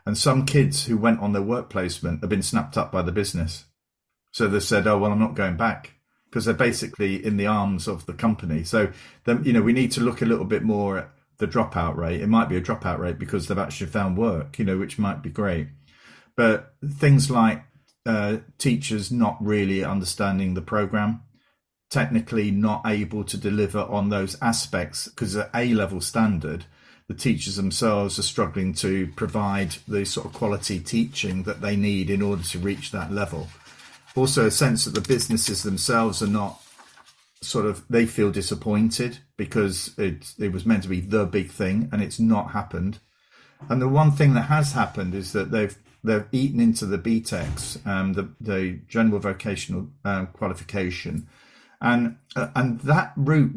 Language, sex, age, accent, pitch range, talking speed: English, male, 40-59, British, 95-115 Hz, 185 wpm